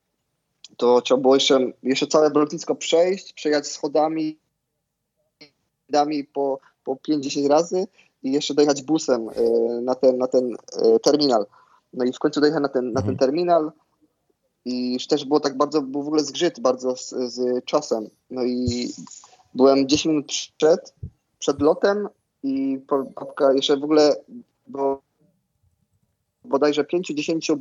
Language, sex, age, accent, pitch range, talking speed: Polish, male, 20-39, native, 125-150 Hz, 135 wpm